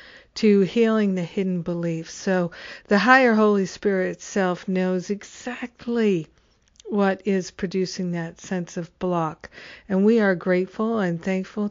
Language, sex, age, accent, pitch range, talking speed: English, female, 60-79, American, 175-200 Hz, 135 wpm